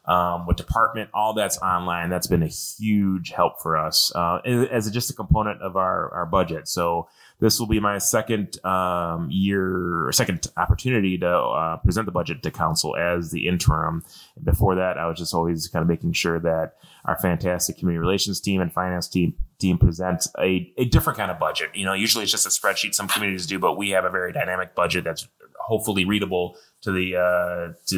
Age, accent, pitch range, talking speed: 20-39, American, 85-105 Hz, 210 wpm